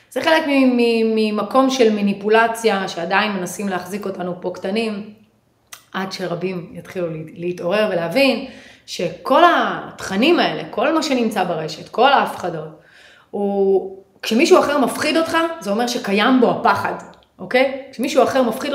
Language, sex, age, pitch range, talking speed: Hebrew, female, 30-49, 205-275 Hz, 125 wpm